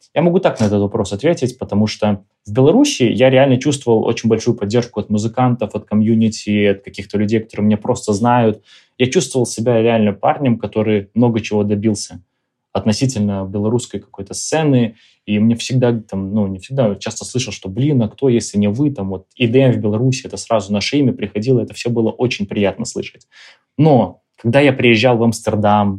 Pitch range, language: 105-125 Hz, Russian